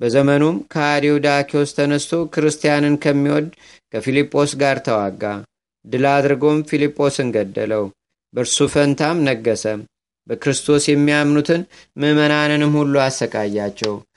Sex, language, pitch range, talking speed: male, Amharic, 130-145 Hz, 85 wpm